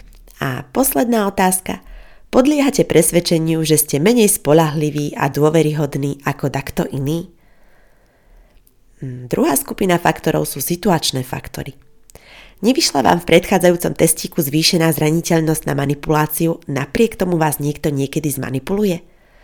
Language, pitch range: Slovak, 145-195 Hz